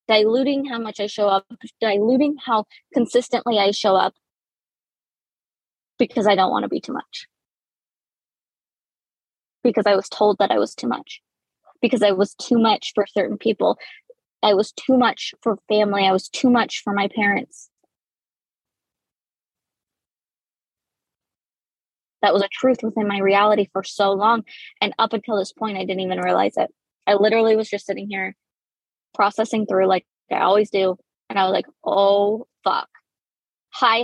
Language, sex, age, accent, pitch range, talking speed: English, female, 20-39, American, 200-235 Hz, 155 wpm